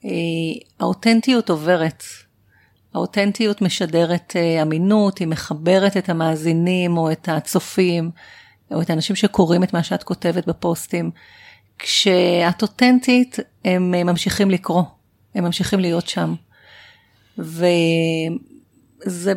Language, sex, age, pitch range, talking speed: Hebrew, female, 40-59, 170-215 Hz, 95 wpm